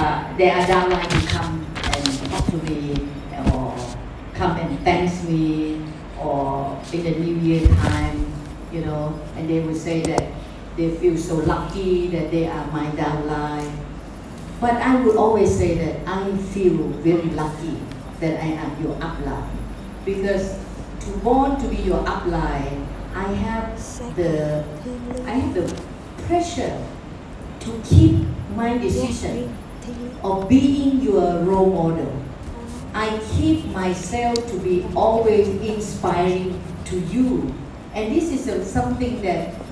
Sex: female